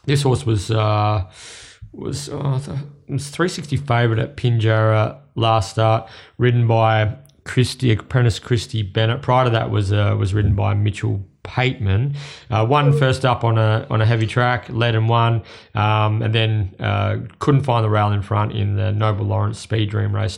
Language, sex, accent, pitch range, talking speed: English, male, Australian, 110-130 Hz, 180 wpm